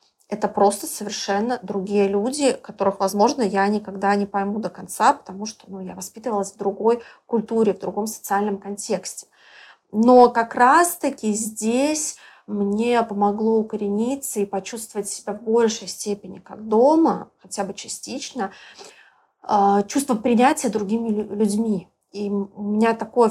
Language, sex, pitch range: Russian, female, 200-240 Hz